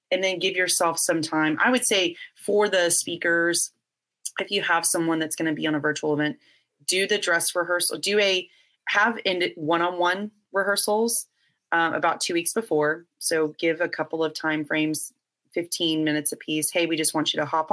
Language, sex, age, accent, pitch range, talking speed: English, female, 30-49, American, 155-175 Hz, 185 wpm